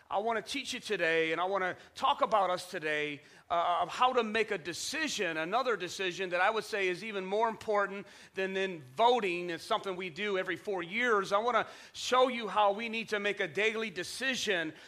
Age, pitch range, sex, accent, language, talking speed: 40-59, 190-220 Hz, male, American, English, 220 wpm